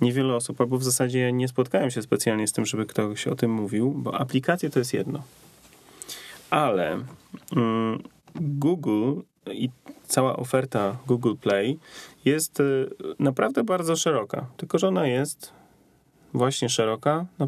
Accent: native